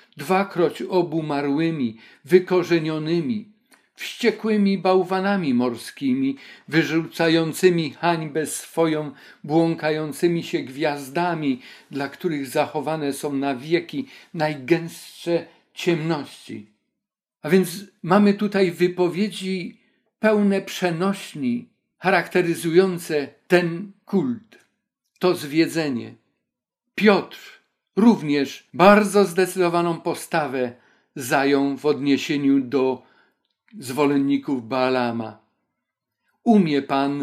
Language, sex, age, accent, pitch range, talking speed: Polish, male, 50-69, native, 140-185 Hz, 75 wpm